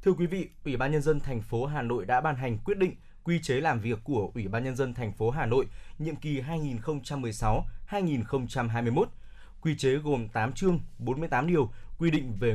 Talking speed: 200 wpm